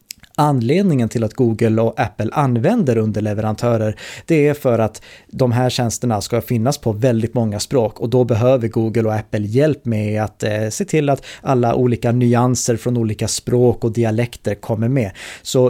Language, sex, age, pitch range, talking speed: Swedish, male, 30-49, 115-145 Hz, 170 wpm